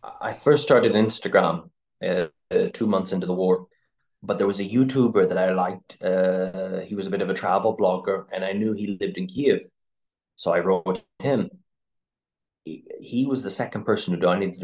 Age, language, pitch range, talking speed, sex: 20-39, English, 90-115 Hz, 195 wpm, male